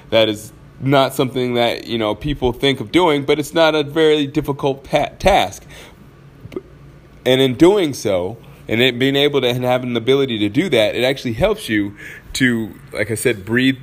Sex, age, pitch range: male, 20-39, 120-145 Hz